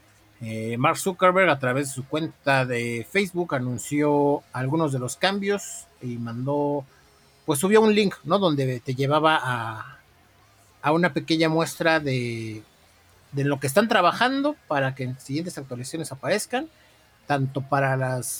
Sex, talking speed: male, 145 wpm